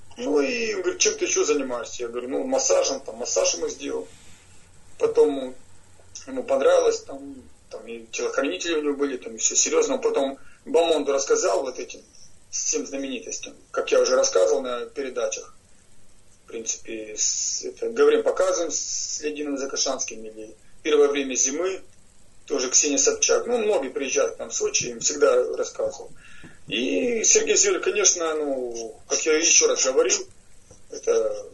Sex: male